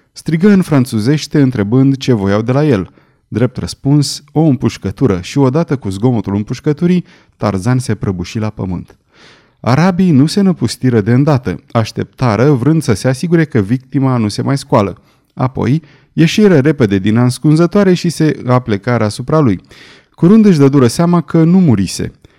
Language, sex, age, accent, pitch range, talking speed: Romanian, male, 30-49, native, 110-150 Hz, 155 wpm